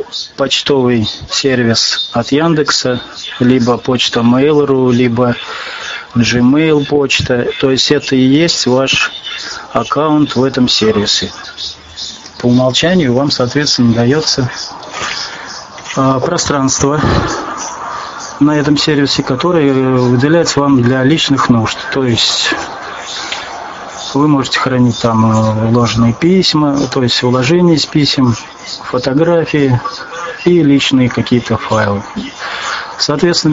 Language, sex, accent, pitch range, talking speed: Russian, male, native, 120-145 Hz, 95 wpm